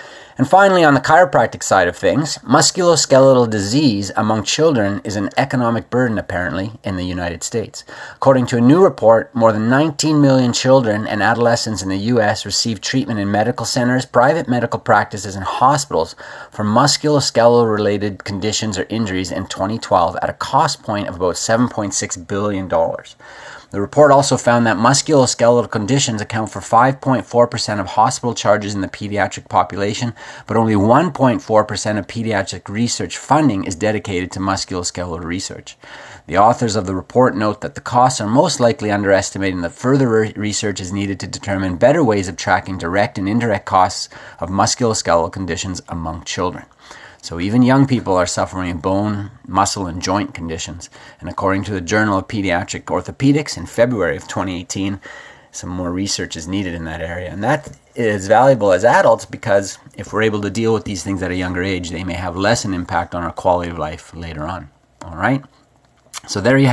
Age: 30-49